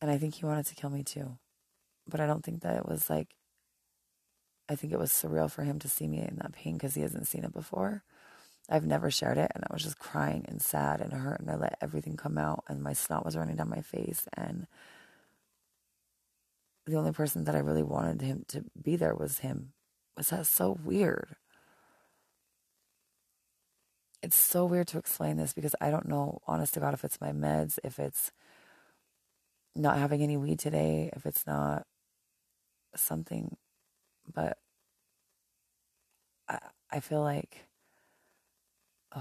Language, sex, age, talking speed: English, female, 20-39, 175 wpm